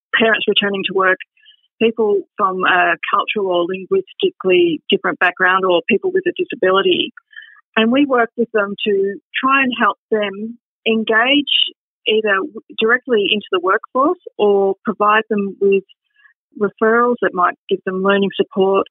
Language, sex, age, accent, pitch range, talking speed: English, female, 40-59, Australian, 190-285 Hz, 140 wpm